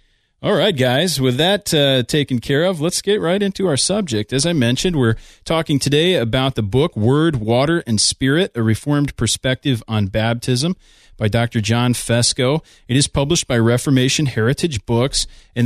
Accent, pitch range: American, 110-145 Hz